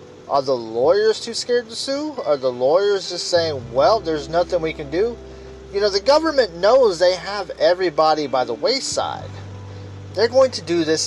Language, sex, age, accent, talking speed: English, male, 30-49, American, 185 wpm